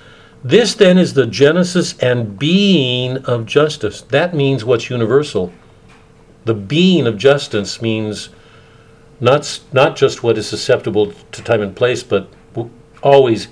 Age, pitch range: 50-69, 115-150 Hz